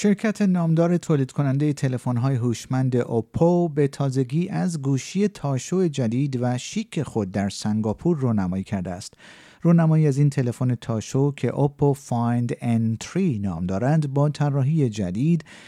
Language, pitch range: Persian, 110-150 Hz